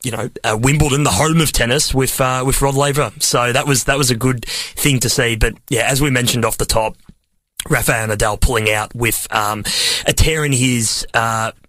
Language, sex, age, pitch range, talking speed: English, male, 30-49, 115-145 Hz, 215 wpm